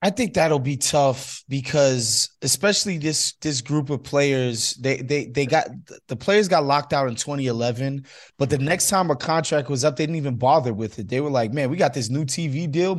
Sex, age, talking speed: male, 20-39, 215 wpm